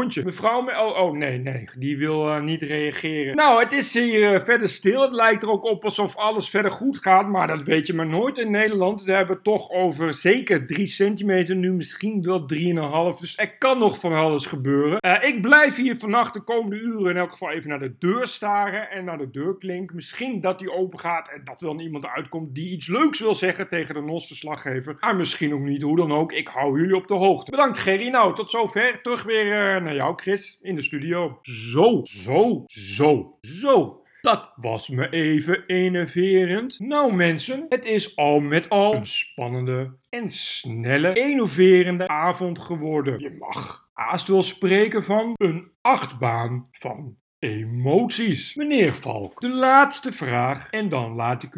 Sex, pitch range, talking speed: male, 150-210 Hz, 190 wpm